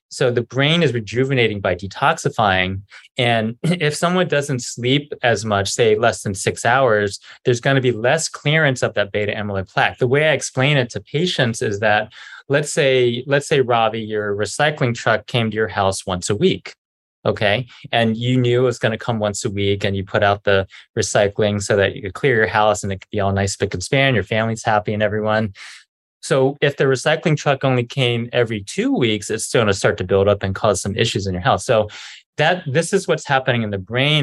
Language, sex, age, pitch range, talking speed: English, male, 20-39, 105-130 Hz, 225 wpm